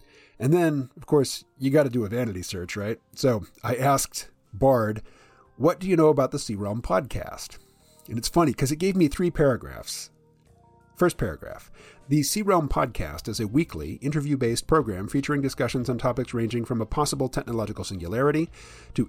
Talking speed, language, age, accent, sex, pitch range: 175 wpm, English, 40-59, American, male, 110-145 Hz